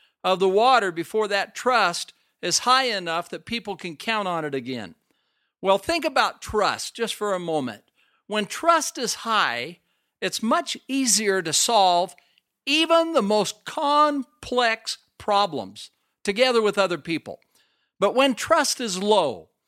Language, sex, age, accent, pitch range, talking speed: English, male, 50-69, American, 180-245 Hz, 145 wpm